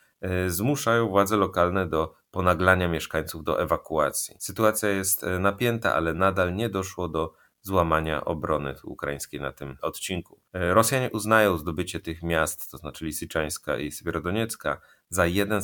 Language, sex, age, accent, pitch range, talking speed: Polish, male, 30-49, native, 75-95 Hz, 130 wpm